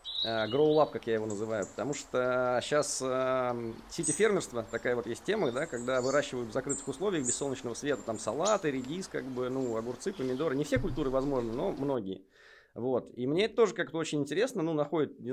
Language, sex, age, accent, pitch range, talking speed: Russian, male, 20-39, native, 125-155 Hz, 190 wpm